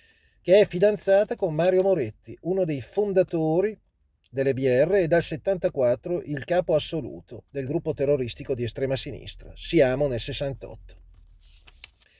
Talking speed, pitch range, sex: 130 wpm, 125-185 Hz, male